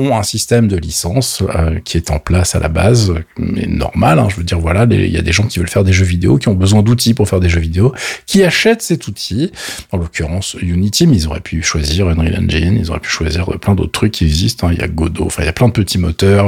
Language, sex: French, male